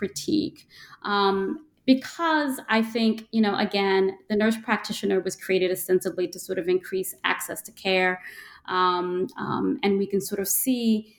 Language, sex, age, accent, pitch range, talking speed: English, female, 20-39, American, 180-215 Hz, 155 wpm